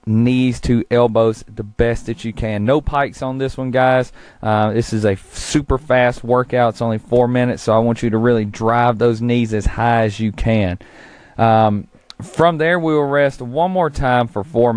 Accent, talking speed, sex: American, 205 wpm, male